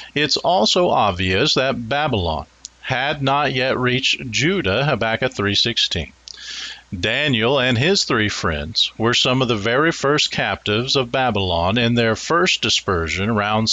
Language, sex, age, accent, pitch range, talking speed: English, male, 50-69, American, 110-145 Hz, 135 wpm